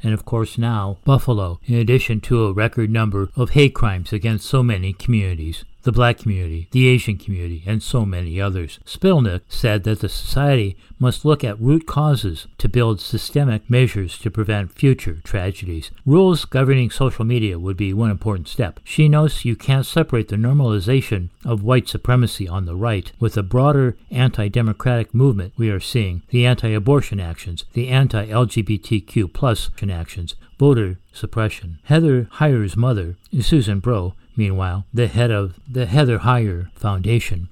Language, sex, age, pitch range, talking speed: English, male, 60-79, 95-125 Hz, 160 wpm